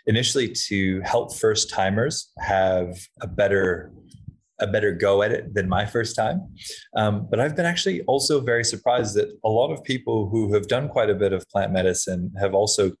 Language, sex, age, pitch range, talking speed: English, male, 30-49, 95-115 Hz, 190 wpm